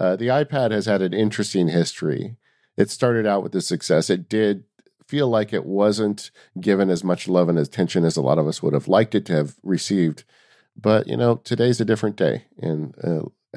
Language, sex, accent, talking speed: English, male, American, 210 wpm